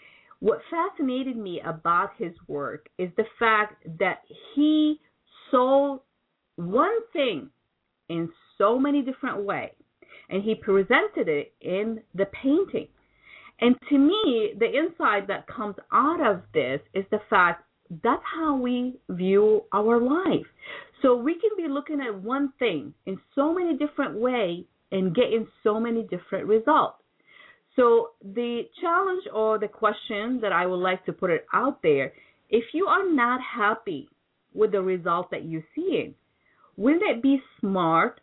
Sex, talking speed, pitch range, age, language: female, 150 wpm, 190-275 Hz, 40-59, English